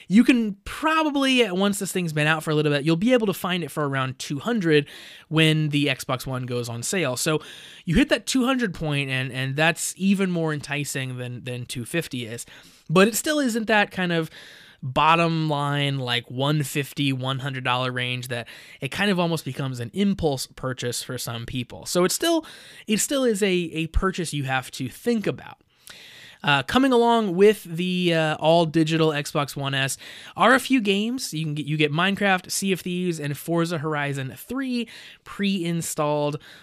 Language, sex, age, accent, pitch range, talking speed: English, male, 20-39, American, 135-195 Hz, 180 wpm